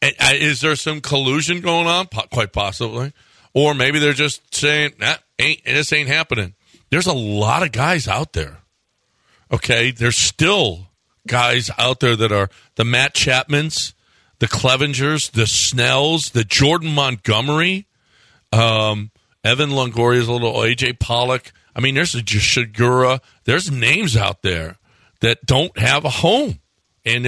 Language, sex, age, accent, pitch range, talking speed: English, male, 50-69, American, 110-145 Hz, 140 wpm